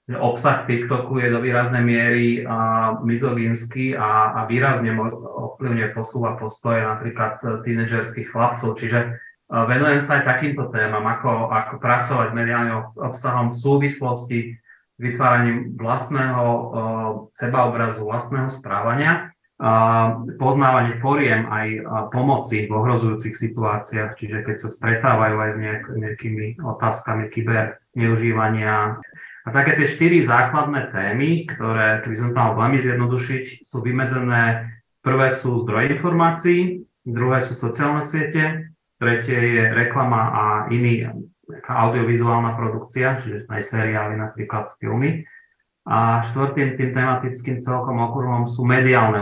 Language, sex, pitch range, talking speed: Slovak, male, 110-130 Hz, 120 wpm